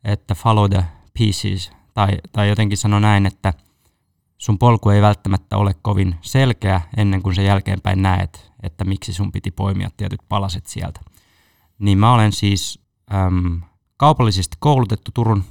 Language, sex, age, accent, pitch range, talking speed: Finnish, male, 20-39, native, 95-110 Hz, 145 wpm